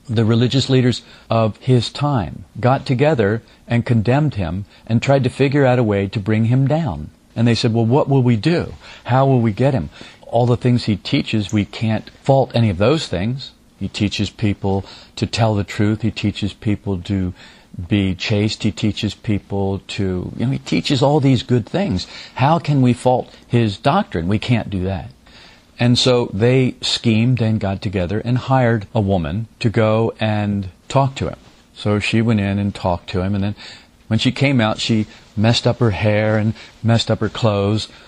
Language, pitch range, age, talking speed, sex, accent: English, 100-120 Hz, 50-69, 195 wpm, male, American